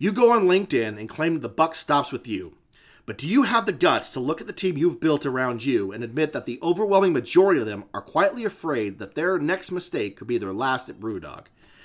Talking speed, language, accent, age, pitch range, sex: 245 wpm, English, American, 30-49, 120-175 Hz, male